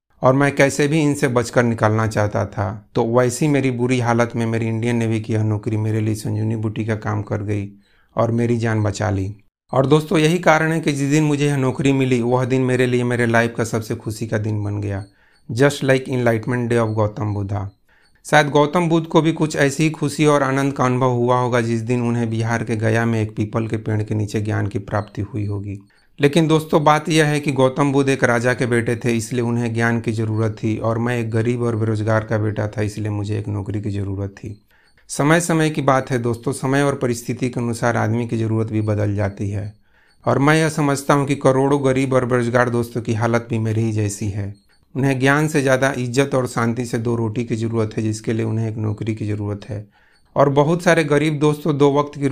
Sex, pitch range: male, 110-135 Hz